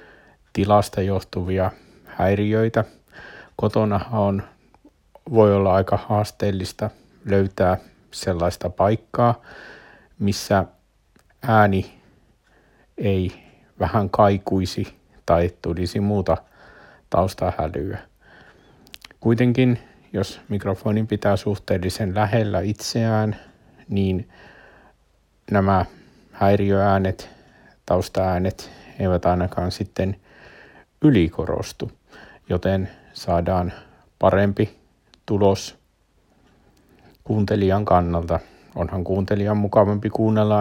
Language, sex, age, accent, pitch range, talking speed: Finnish, male, 60-79, native, 95-105 Hz, 70 wpm